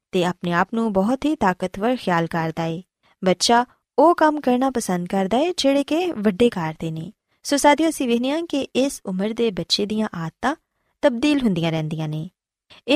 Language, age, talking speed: Punjabi, 20-39, 155 wpm